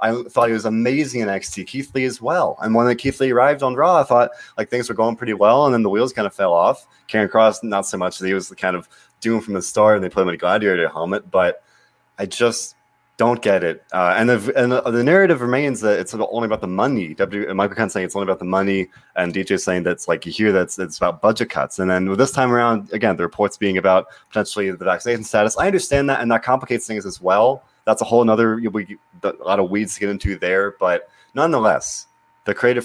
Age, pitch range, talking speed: 20-39, 95-120 Hz, 255 wpm